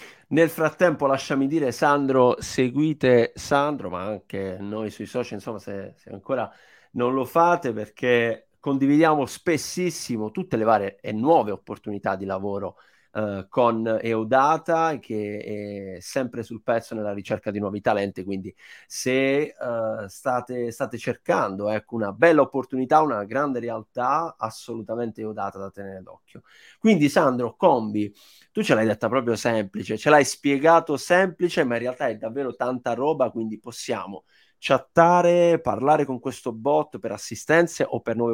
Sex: male